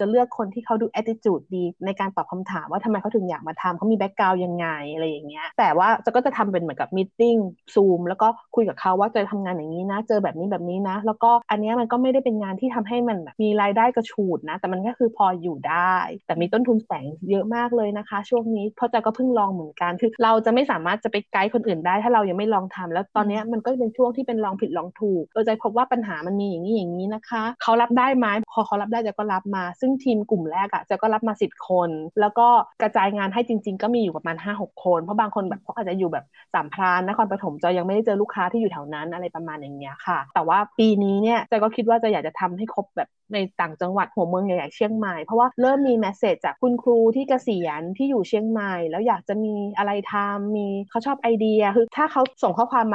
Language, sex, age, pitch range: Thai, female, 20-39, 185-230 Hz